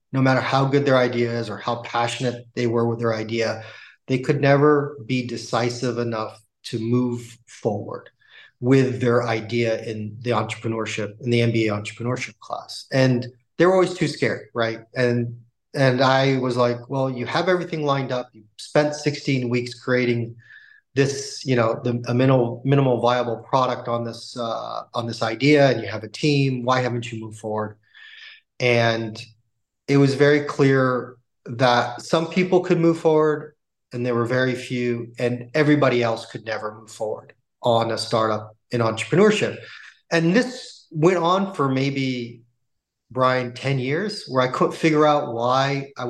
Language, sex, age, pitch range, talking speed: English, male, 30-49, 115-140 Hz, 165 wpm